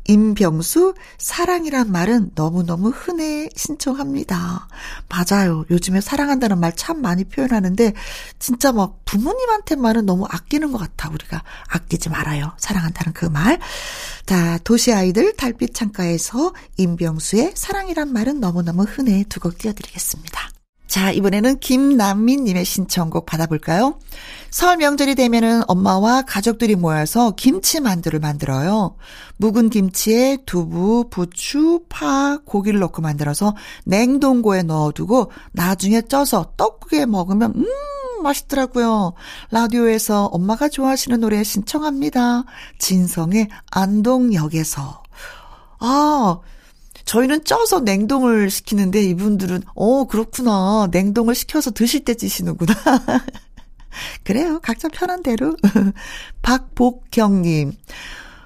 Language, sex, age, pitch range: Korean, female, 40-59, 185-265 Hz